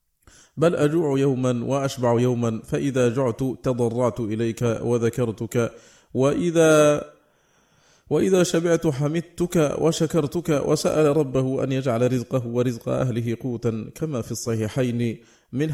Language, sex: Arabic, male